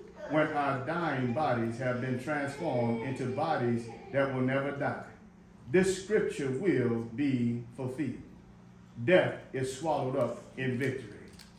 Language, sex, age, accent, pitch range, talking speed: English, male, 40-59, American, 125-175 Hz, 125 wpm